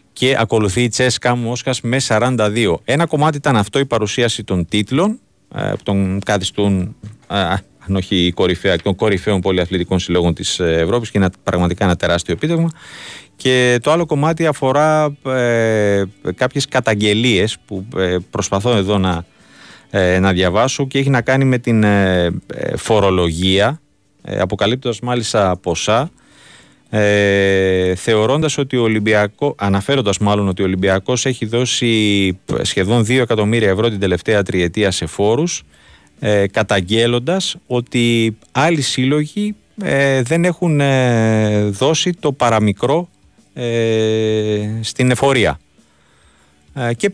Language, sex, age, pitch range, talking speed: Greek, male, 30-49, 95-130 Hz, 125 wpm